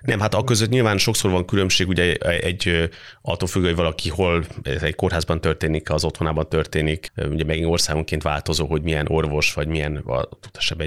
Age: 30-49